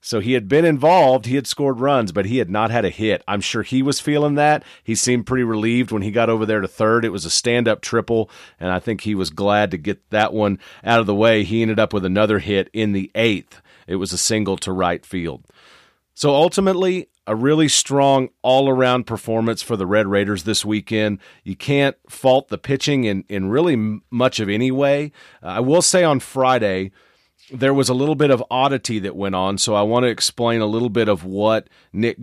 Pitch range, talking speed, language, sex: 105-130 Hz, 225 wpm, English, male